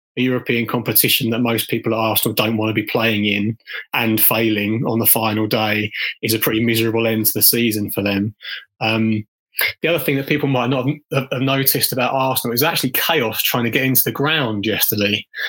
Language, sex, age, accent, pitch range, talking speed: English, male, 20-39, British, 110-130 Hz, 200 wpm